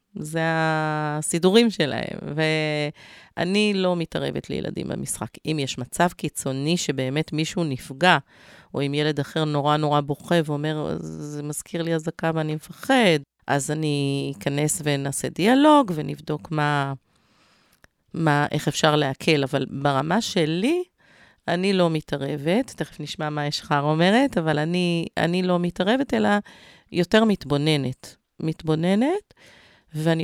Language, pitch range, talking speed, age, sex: Hebrew, 145-180 Hz, 120 wpm, 30-49, female